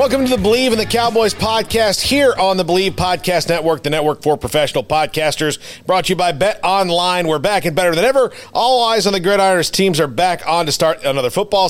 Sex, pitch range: male, 155-190 Hz